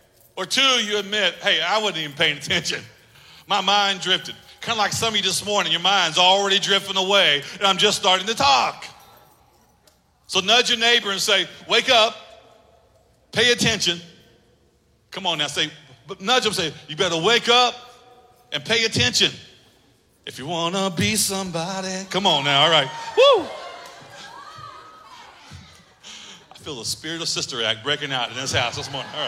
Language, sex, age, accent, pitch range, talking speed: English, male, 40-59, American, 175-225 Hz, 170 wpm